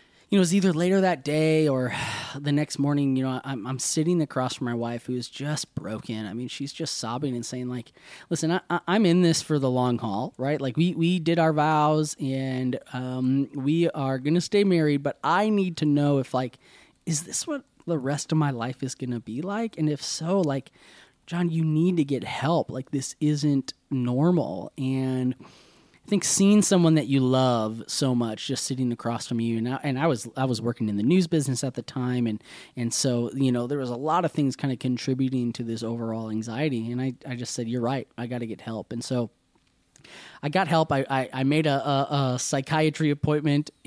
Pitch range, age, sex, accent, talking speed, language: 125-155 Hz, 20-39, male, American, 220 wpm, English